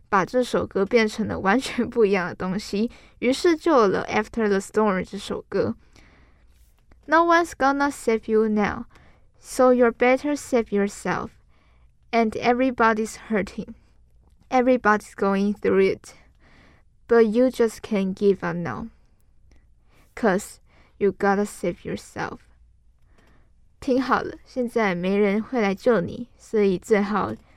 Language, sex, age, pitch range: Chinese, female, 10-29, 195-240 Hz